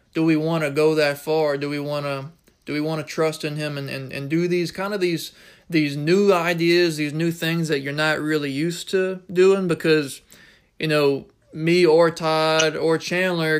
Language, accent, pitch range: English, American, 150-165 Hz